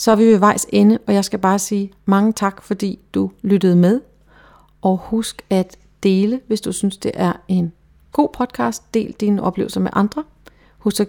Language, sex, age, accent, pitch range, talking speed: Danish, female, 40-59, native, 170-205 Hz, 195 wpm